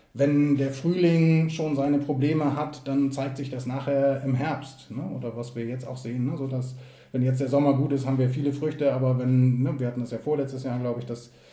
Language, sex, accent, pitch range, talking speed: German, male, German, 125-145 Hz, 240 wpm